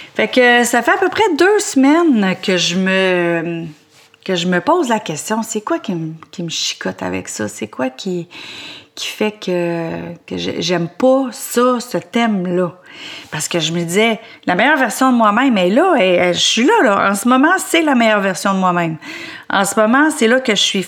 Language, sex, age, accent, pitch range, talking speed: French, female, 30-49, Canadian, 180-250 Hz, 215 wpm